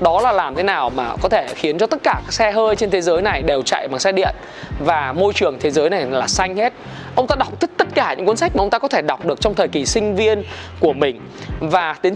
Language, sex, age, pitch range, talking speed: Vietnamese, male, 20-39, 195-250 Hz, 285 wpm